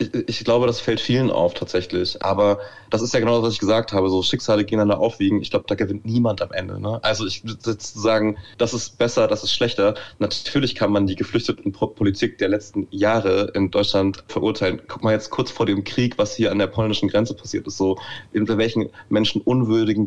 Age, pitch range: 30-49, 100-115 Hz